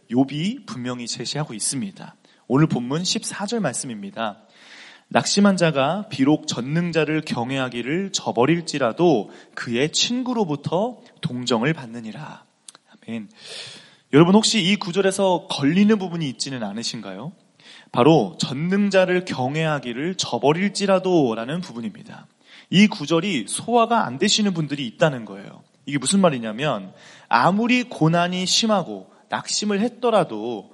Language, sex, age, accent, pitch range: Korean, male, 30-49, native, 150-215 Hz